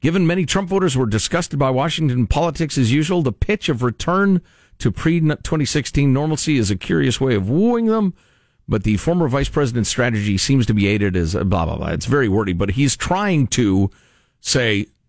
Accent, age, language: American, 50-69, English